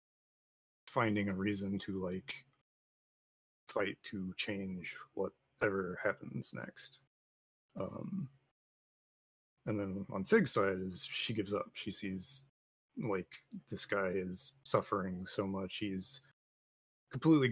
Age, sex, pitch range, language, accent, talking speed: 30-49, male, 95-125 Hz, English, American, 110 wpm